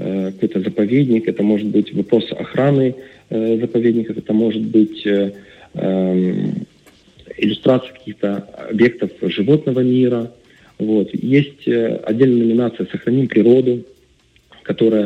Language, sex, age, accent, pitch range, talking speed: Russian, male, 40-59, native, 100-120 Hz, 110 wpm